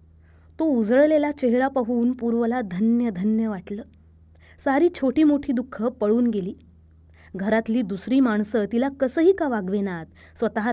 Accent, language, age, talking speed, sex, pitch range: native, Marathi, 20-39, 125 wpm, female, 175-250 Hz